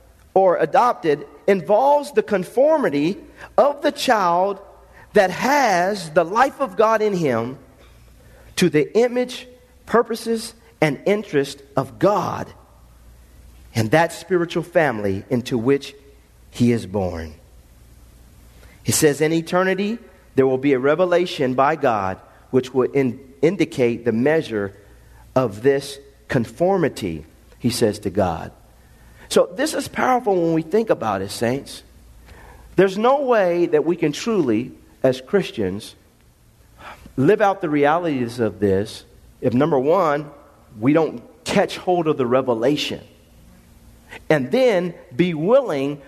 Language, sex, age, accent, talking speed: English, male, 40-59, American, 125 wpm